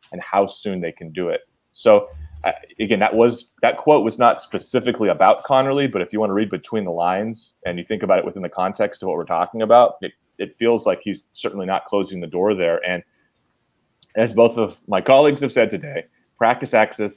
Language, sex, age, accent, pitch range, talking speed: English, male, 30-49, American, 90-115 Hz, 215 wpm